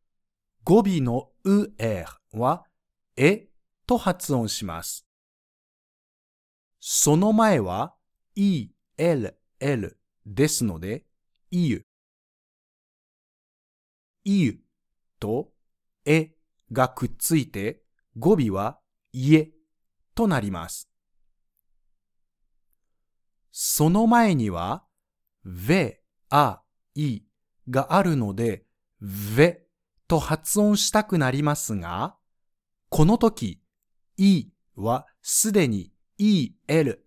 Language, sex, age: Japanese, male, 50-69